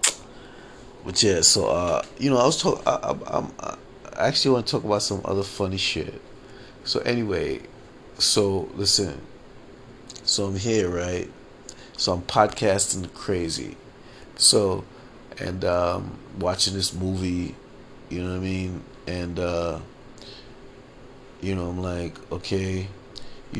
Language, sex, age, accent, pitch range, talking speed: English, male, 30-49, American, 90-100 Hz, 125 wpm